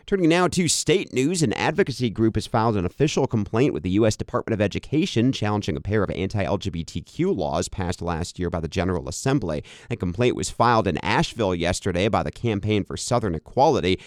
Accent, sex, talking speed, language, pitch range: American, male, 190 wpm, English, 85-115 Hz